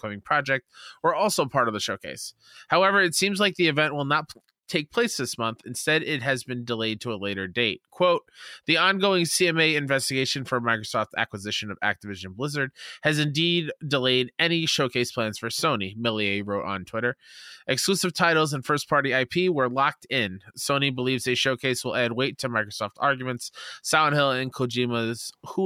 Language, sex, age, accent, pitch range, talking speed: English, male, 20-39, American, 115-155 Hz, 175 wpm